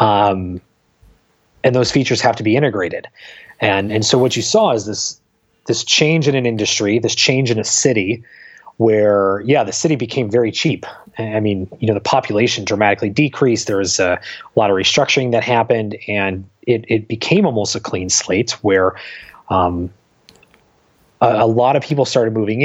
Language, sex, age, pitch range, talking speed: English, male, 30-49, 105-130 Hz, 175 wpm